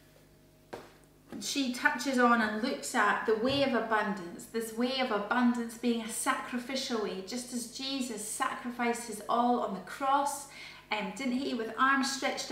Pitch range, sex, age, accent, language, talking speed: 220-265 Hz, female, 30-49, British, English, 160 wpm